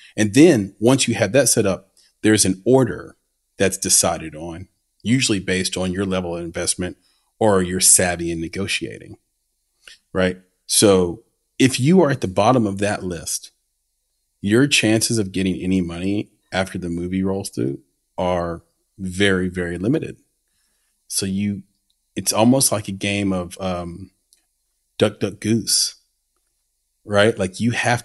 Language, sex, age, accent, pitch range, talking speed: English, male, 40-59, American, 90-110 Hz, 145 wpm